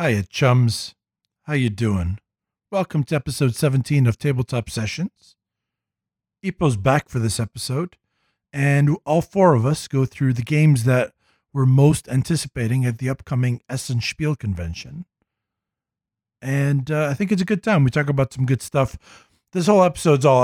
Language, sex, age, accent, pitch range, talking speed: English, male, 50-69, American, 115-145 Hz, 160 wpm